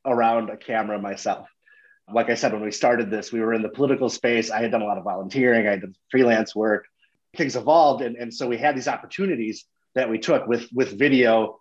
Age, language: 30-49, English